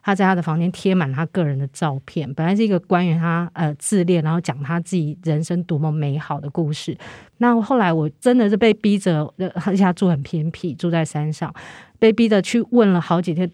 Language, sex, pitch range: Chinese, female, 160-200 Hz